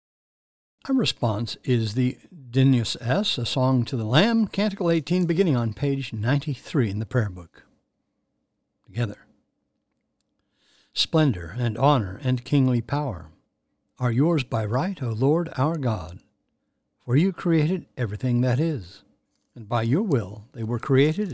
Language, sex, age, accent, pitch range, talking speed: English, male, 60-79, American, 120-155 Hz, 140 wpm